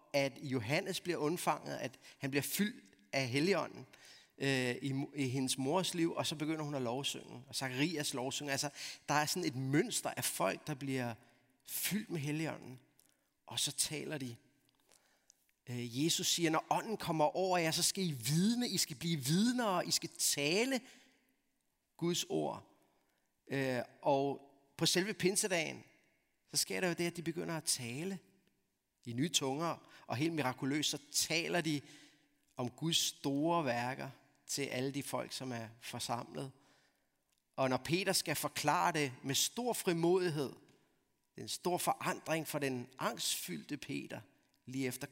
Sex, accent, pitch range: male, native, 130-170 Hz